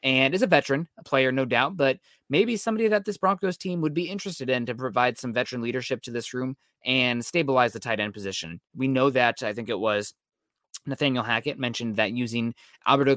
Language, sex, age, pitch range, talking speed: English, male, 20-39, 115-135 Hz, 210 wpm